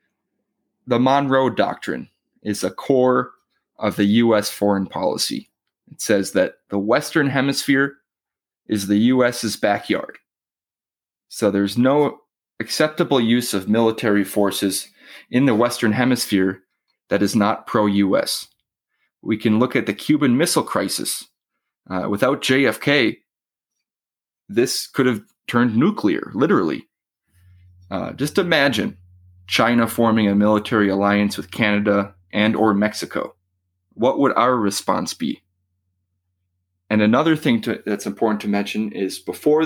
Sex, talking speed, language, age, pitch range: male, 125 wpm, English, 30-49, 90-115 Hz